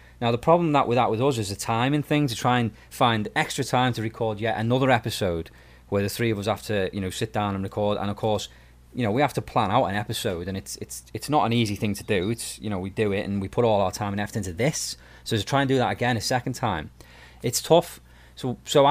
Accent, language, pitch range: British, English, 95-120 Hz